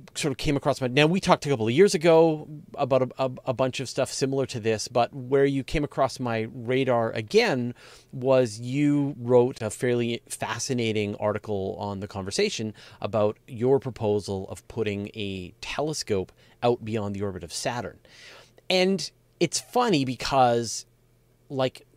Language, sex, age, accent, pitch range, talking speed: English, male, 30-49, American, 105-135 Hz, 160 wpm